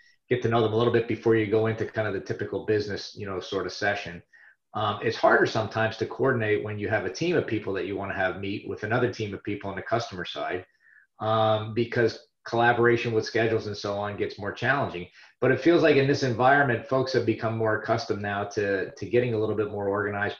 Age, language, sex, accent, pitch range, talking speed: 40-59, English, male, American, 100-120 Hz, 235 wpm